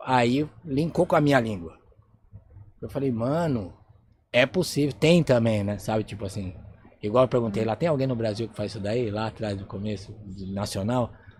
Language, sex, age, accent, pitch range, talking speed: Portuguese, male, 20-39, Brazilian, 105-130 Hz, 185 wpm